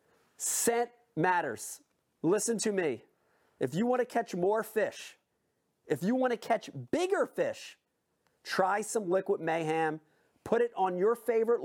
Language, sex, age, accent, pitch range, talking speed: English, male, 40-59, American, 210-315 Hz, 145 wpm